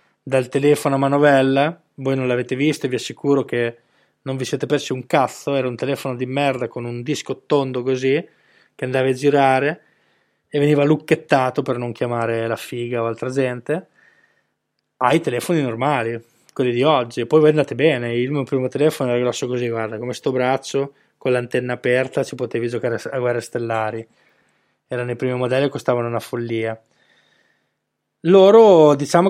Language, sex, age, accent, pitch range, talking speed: Italian, male, 20-39, native, 125-140 Hz, 170 wpm